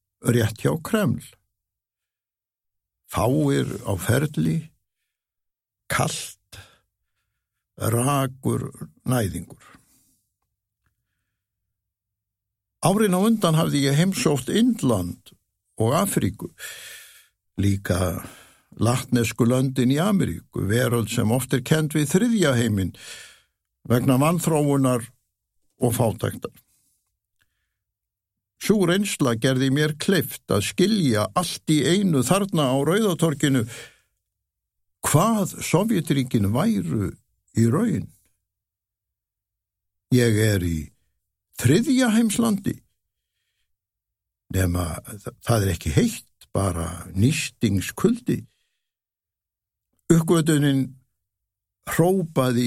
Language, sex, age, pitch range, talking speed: English, male, 60-79, 100-145 Hz, 75 wpm